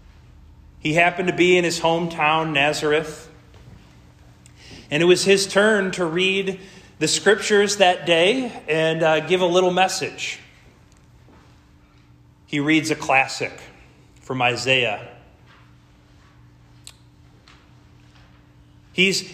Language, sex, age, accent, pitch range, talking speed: English, male, 30-49, American, 130-195 Hz, 100 wpm